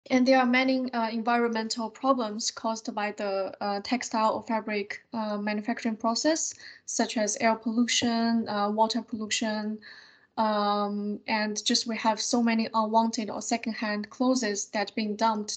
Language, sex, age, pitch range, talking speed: English, female, 10-29, 210-245 Hz, 145 wpm